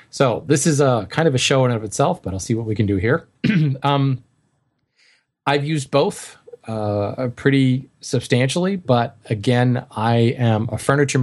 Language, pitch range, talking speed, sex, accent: English, 110-135 Hz, 175 wpm, male, American